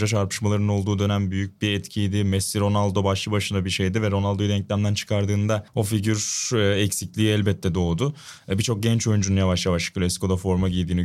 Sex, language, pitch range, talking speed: male, Turkish, 100-135 Hz, 160 wpm